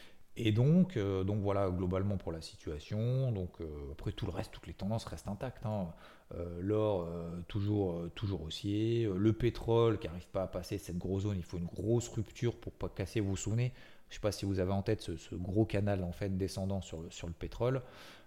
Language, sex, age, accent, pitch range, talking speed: French, male, 30-49, French, 90-115 Hz, 215 wpm